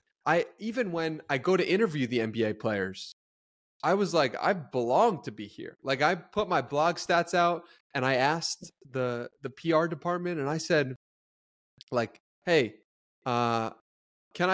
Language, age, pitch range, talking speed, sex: English, 20-39, 125-180 Hz, 160 wpm, male